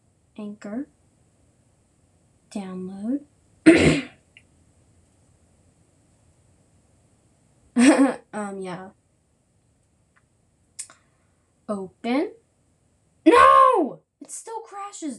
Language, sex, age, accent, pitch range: English, female, 10-29, American, 190-295 Hz